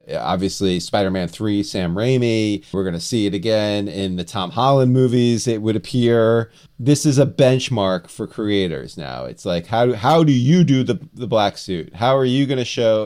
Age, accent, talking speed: 30-49, American, 200 wpm